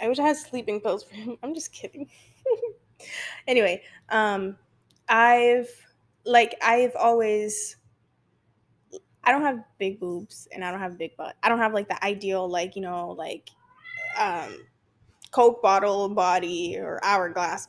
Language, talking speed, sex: English, 155 wpm, female